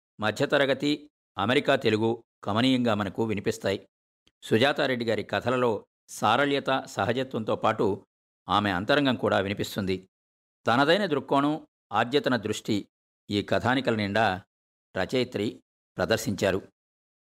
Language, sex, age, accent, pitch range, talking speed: Telugu, male, 50-69, native, 95-125 Hz, 85 wpm